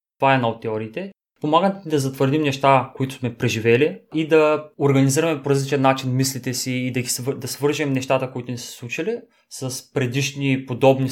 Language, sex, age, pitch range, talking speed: Bulgarian, male, 20-39, 120-140 Hz, 185 wpm